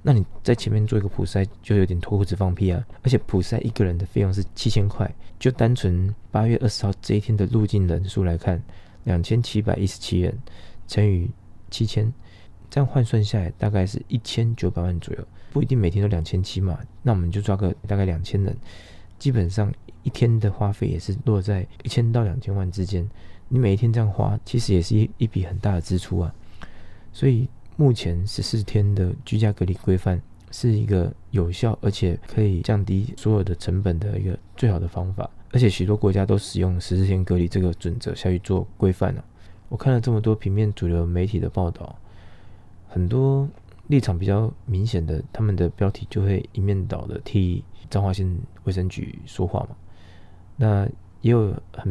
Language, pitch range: Chinese, 90-110 Hz